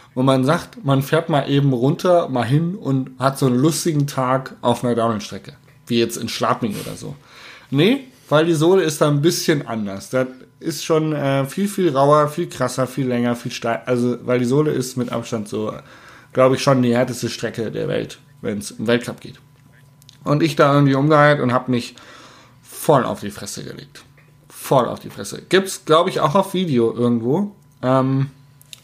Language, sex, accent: German, male, German